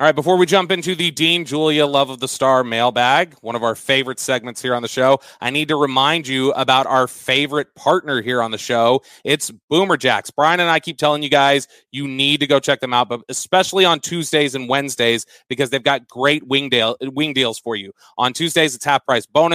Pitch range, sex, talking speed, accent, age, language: 130-160 Hz, male, 225 wpm, American, 30-49, English